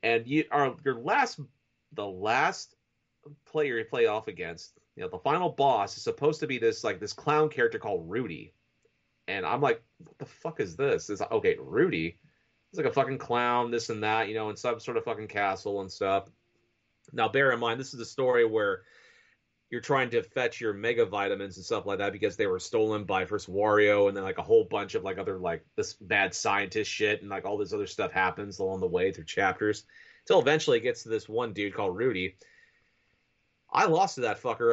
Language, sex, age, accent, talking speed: English, male, 30-49, American, 220 wpm